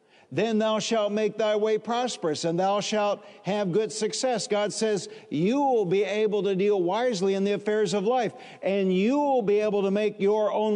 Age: 50-69